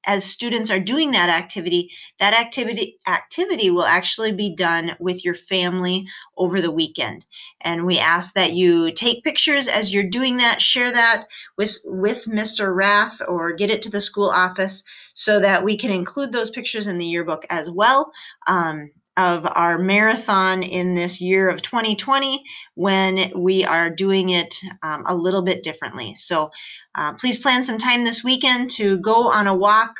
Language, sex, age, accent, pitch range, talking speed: English, female, 30-49, American, 170-215 Hz, 175 wpm